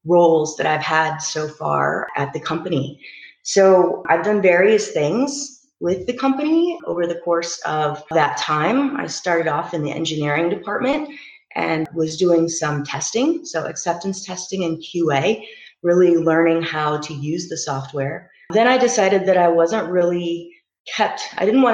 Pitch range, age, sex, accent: 150-185 Hz, 30-49, female, American